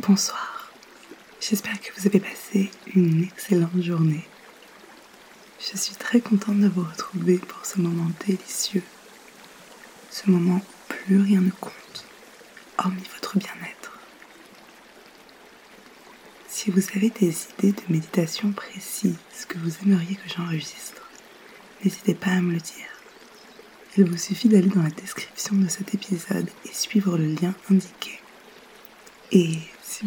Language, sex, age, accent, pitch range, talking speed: French, female, 20-39, French, 170-200 Hz, 130 wpm